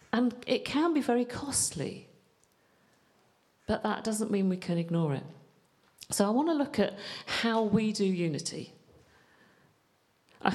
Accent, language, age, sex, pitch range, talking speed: British, English, 50-69, female, 175-245 Hz, 140 wpm